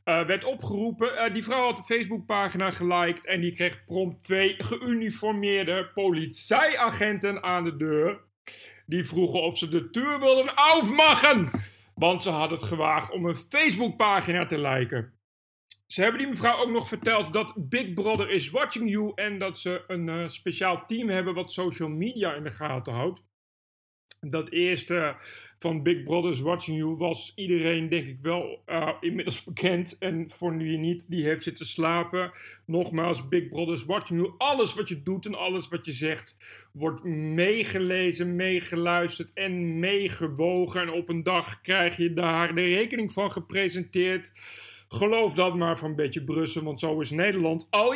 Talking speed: 165 wpm